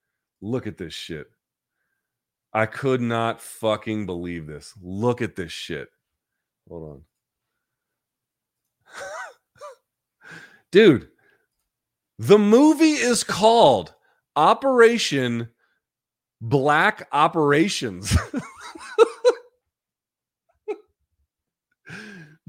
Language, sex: English, male